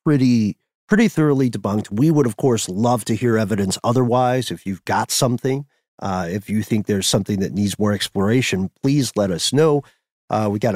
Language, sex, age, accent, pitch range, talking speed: English, male, 40-59, American, 95-125 Hz, 190 wpm